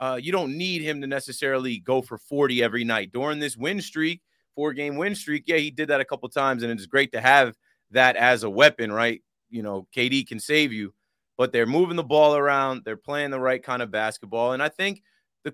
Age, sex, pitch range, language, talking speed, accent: 30-49, male, 125-155 Hz, English, 230 wpm, American